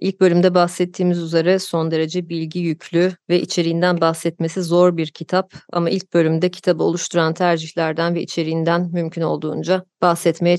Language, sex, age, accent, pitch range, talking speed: Turkish, female, 30-49, native, 170-195 Hz, 140 wpm